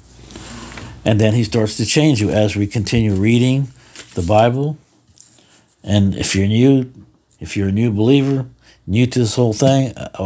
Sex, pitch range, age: male, 100-120 Hz, 60-79